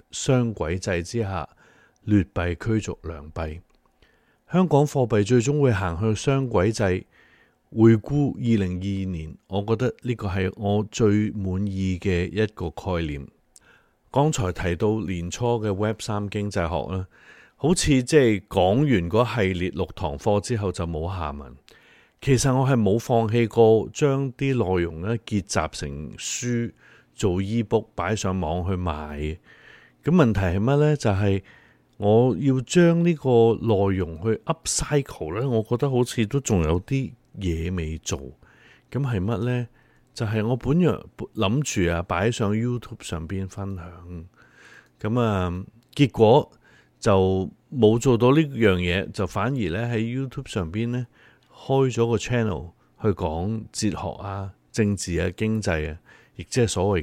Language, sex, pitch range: Chinese, male, 90-120 Hz